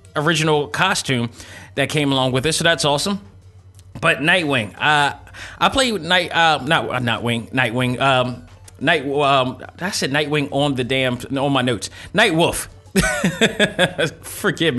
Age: 30-49